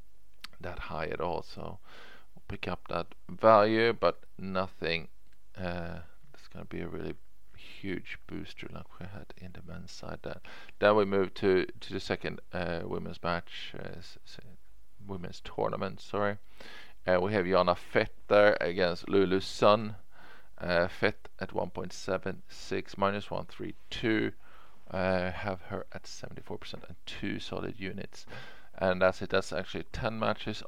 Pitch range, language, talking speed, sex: 90-105 Hz, English, 155 wpm, male